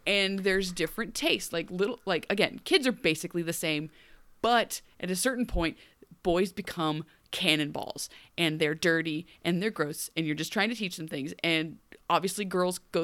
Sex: female